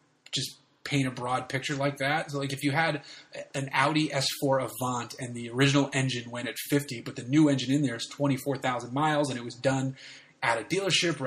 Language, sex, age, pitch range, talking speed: English, male, 30-49, 125-150 Hz, 215 wpm